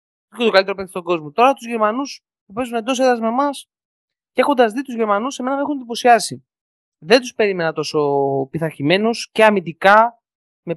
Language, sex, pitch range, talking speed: Greek, male, 170-225 Hz, 180 wpm